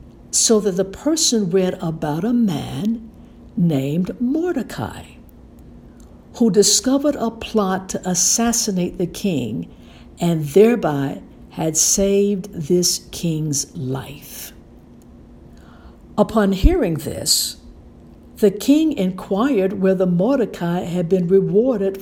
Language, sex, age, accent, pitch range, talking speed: English, female, 60-79, American, 180-240 Hz, 100 wpm